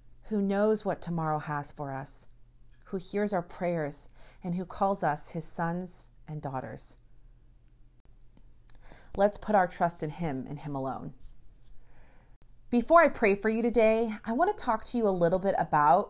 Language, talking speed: English, 165 wpm